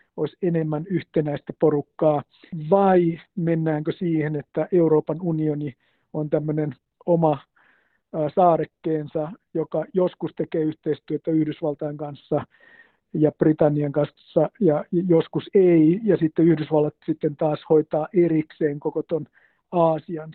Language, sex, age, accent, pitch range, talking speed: Finnish, male, 50-69, native, 155-175 Hz, 105 wpm